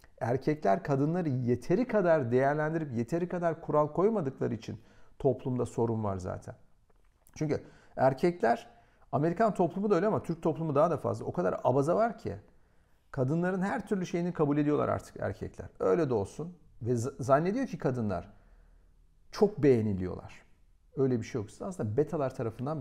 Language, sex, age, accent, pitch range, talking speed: Turkish, male, 50-69, native, 100-150 Hz, 145 wpm